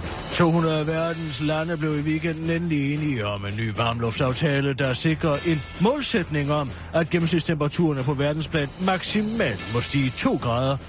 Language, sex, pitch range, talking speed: Danish, male, 140-180 Hz, 145 wpm